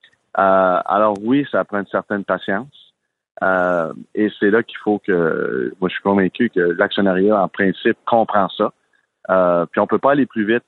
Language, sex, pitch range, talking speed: French, male, 95-115 Hz, 185 wpm